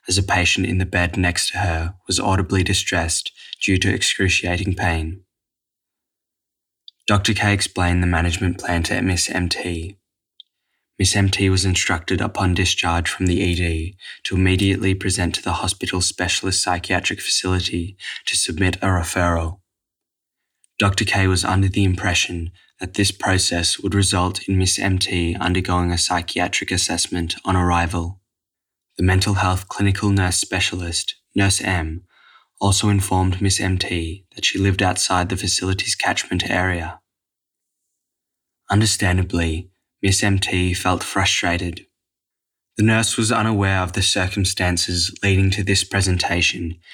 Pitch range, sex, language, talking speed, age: 90-100 Hz, male, English, 130 wpm, 10-29